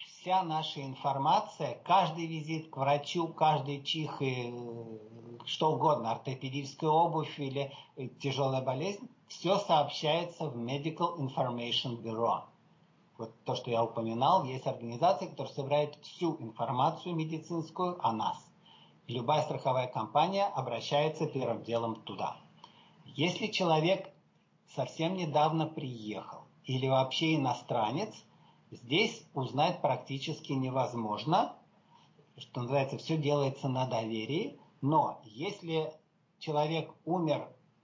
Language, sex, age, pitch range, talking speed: Russian, male, 50-69, 125-160 Hz, 105 wpm